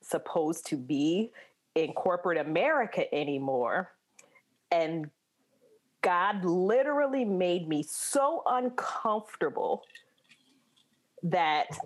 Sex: female